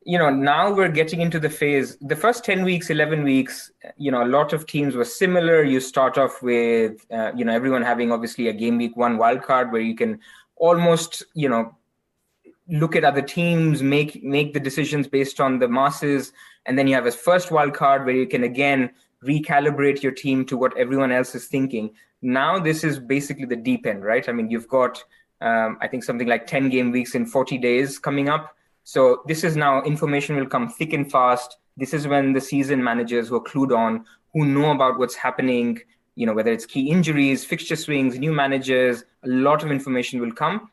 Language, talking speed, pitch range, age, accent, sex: English, 210 wpm, 125-150 Hz, 20-39, Indian, male